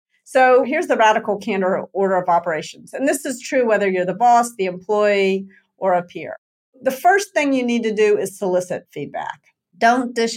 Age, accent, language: 50-69, American, English